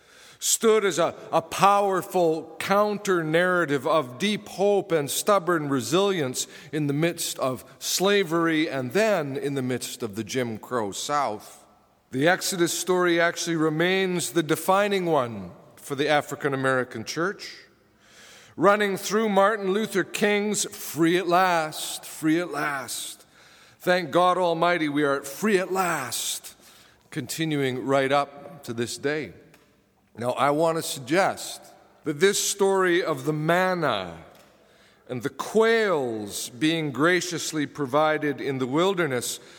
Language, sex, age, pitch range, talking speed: English, male, 40-59, 140-190 Hz, 125 wpm